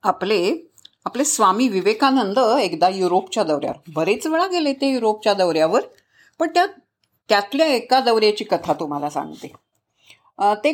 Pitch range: 195-305 Hz